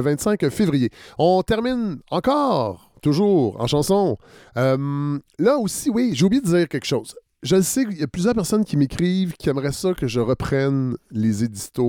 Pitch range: 120-160 Hz